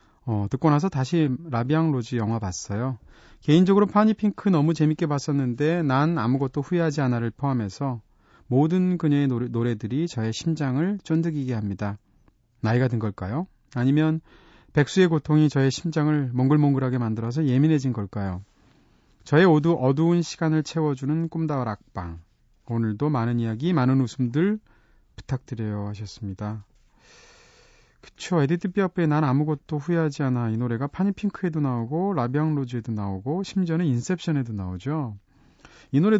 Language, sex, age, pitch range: Korean, male, 30-49, 120-165 Hz